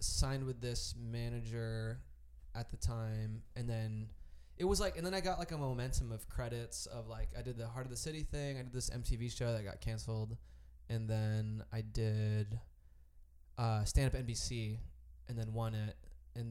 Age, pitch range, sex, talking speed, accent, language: 20-39, 100-125 Hz, male, 190 wpm, American, English